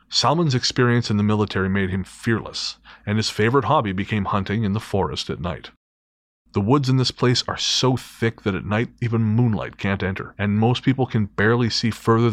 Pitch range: 95-120 Hz